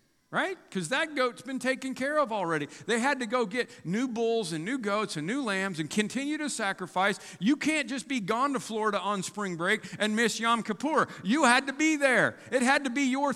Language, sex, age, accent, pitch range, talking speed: English, male, 50-69, American, 160-240 Hz, 225 wpm